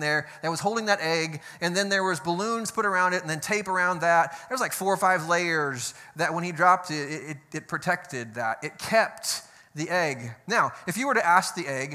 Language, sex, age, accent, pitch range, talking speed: English, male, 20-39, American, 150-195 Hz, 230 wpm